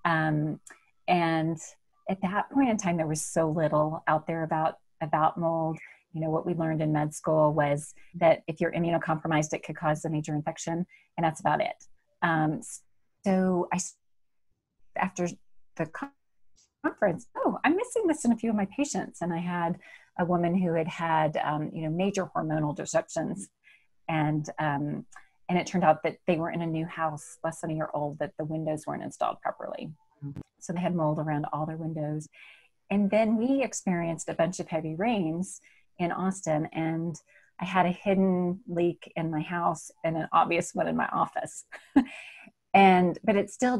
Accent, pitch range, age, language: American, 160-190 Hz, 30-49, English